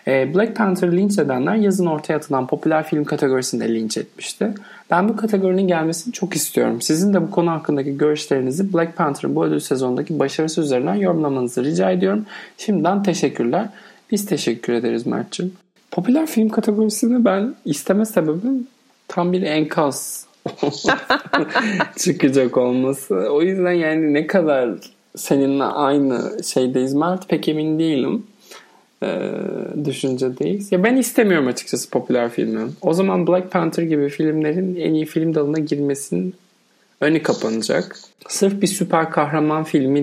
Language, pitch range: Turkish, 140-185 Hz